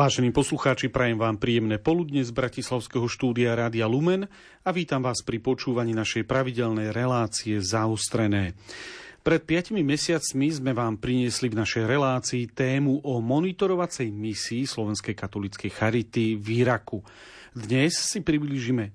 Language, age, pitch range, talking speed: Slovak, 40-59, 110-135 Hz, 130 wpm